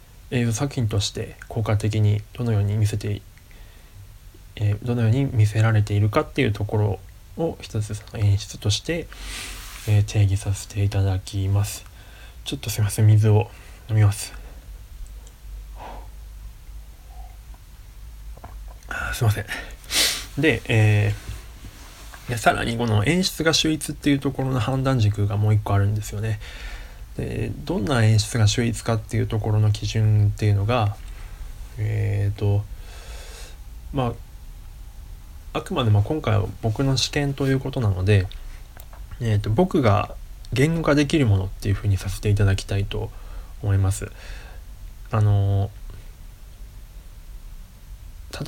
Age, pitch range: 20-39, 95-110 Hz